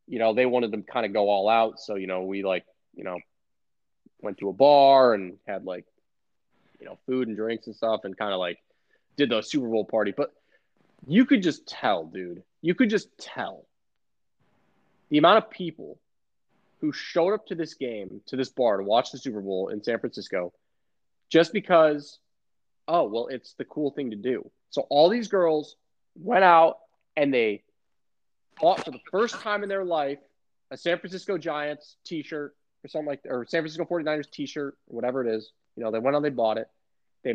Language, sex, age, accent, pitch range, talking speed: English, male, 20-39, American, 115-175 Hz, 200 wpm